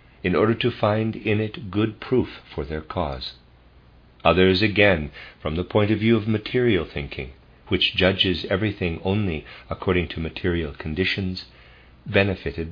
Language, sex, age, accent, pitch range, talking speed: English, male, 50-69, American, 75-105 Hz, 140 wpm